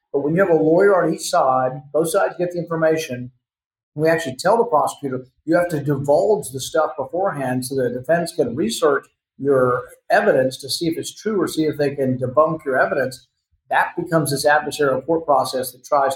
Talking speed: 205 wpm